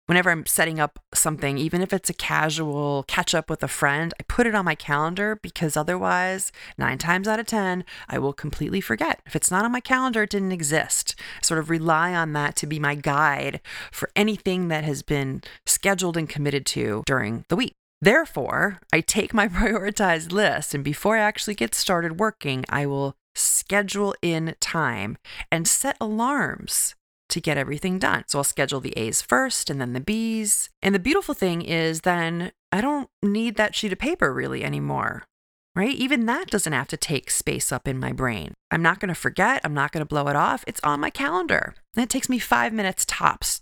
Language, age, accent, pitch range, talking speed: English, 30-49, American, 150-215 Hz, 205 wpm